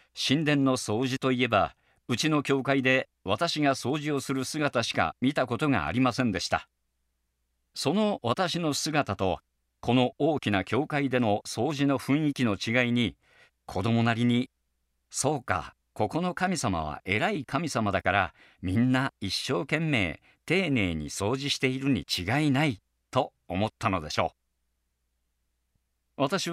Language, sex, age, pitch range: Japanese, male, 50-69, 90-140 Hz